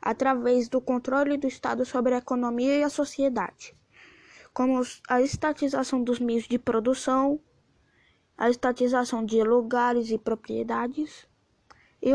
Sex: female